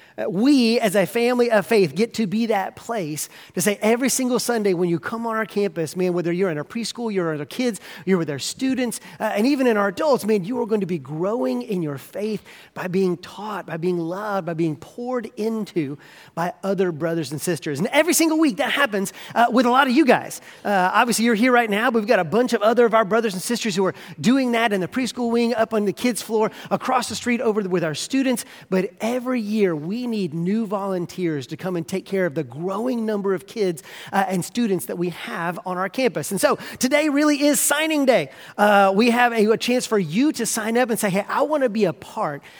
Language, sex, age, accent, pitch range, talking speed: English, male, 30-49, American, 185-240 Hz, 245 wpm